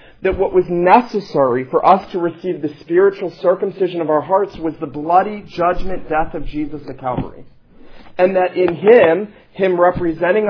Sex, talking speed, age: male, 165 wpm, 40-59